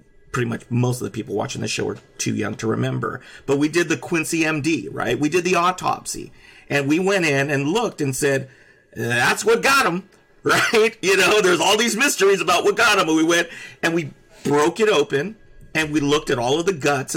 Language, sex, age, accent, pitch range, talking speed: English, male, 40-59, American, 135-180 Hz, 225 wpm